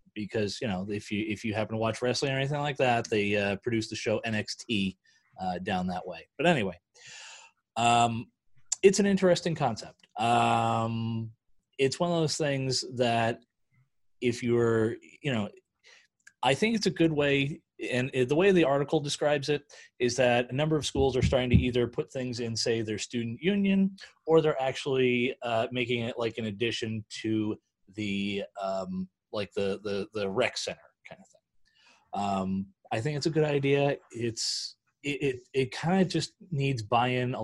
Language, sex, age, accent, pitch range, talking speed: English, male, 30-49, American, 105-135 Hz, 180 wpm